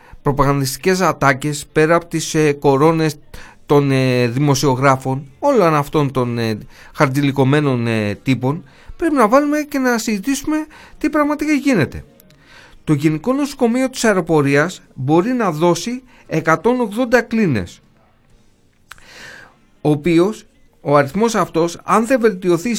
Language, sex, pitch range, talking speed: Greek, male, 150-240 Hz, 105 wpm